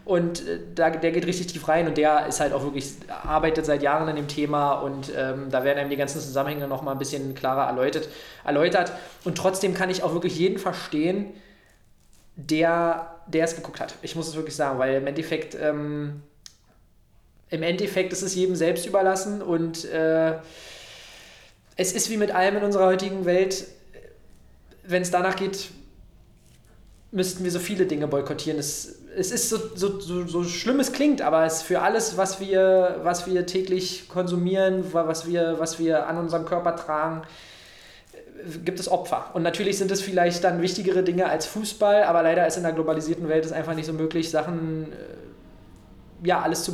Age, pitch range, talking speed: 20-39, 155-185 Hz, 180 wpm